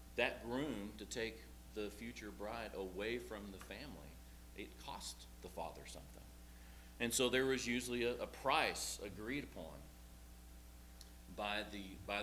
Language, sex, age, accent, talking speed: English, male, 40-59, American, 135 wpm